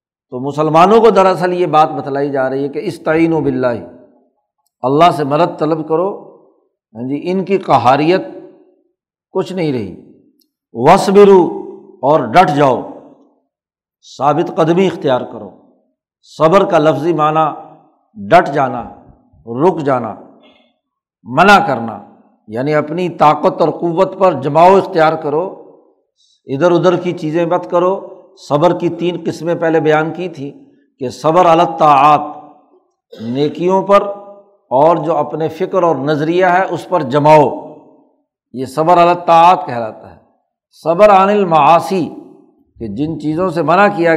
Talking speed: 130 wpm